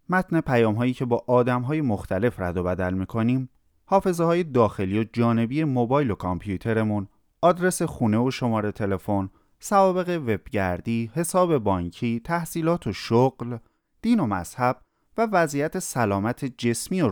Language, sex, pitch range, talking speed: Persian, male, 105-160 Hz, 145 wpm